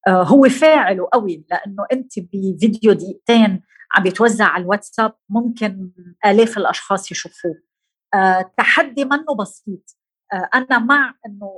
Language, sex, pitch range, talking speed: Arabic, female, 195-255 Hz, 110 wpm